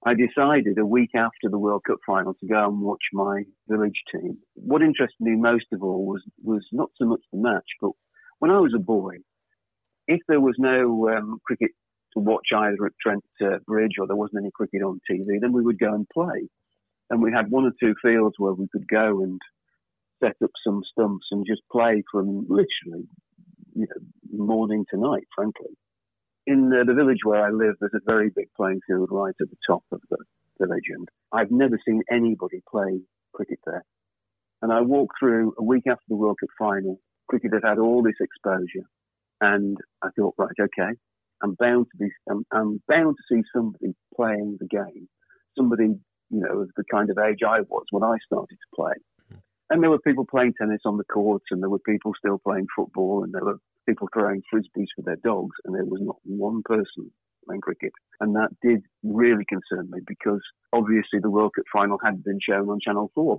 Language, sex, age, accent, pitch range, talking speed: English, male, 50-69, British, 100-115 Hz, 205 wpm